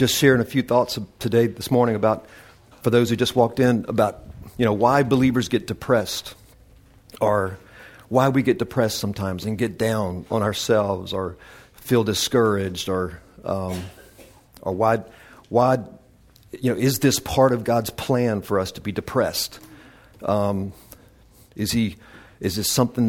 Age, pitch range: 50-69, 100-120 Hz